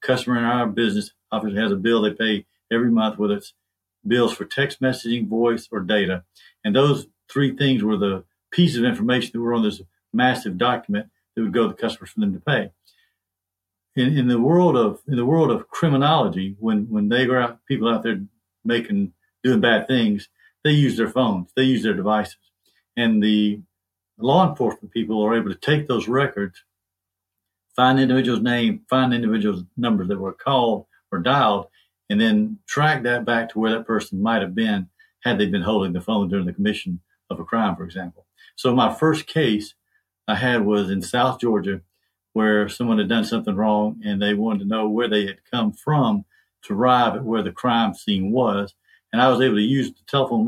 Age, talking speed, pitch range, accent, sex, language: 50-69, 200 wpm, 105-135 Hz, American, male, English